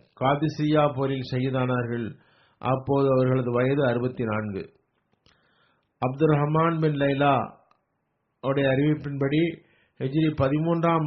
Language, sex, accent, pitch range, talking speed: Tamil, male, native, 130-150 Hz, 80 wpm